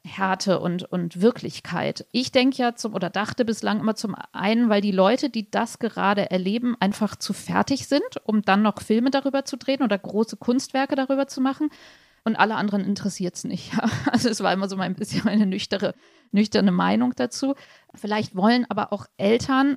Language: German